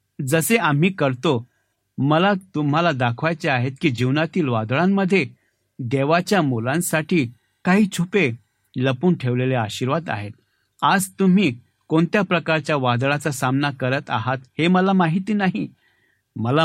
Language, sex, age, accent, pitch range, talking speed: Marathi, male, 60-79, native, 125-175 Hz, 80 wpm